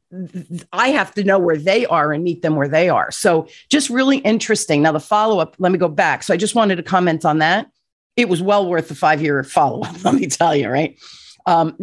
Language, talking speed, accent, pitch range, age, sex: English, 245 wpm, American, 170-210 Hz, 40-59, female